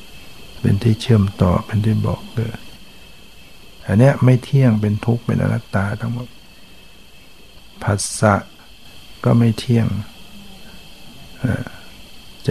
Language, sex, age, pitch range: Thai, male, 60-79, 105-115 Hz